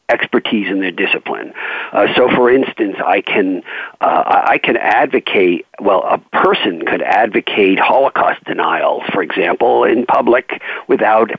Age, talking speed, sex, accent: 50-69, 135 wpm, male, American